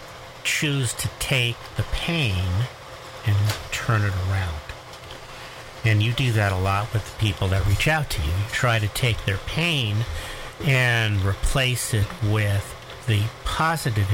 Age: 50-69